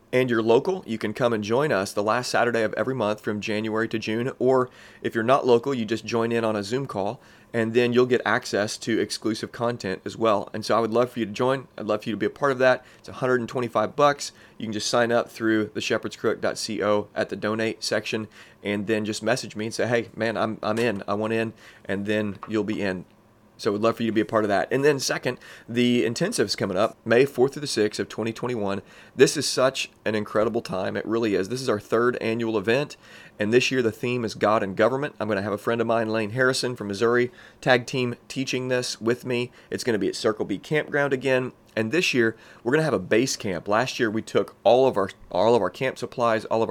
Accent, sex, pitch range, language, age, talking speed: American, male, 105-125 Hz, English, 30-49, 250 wpm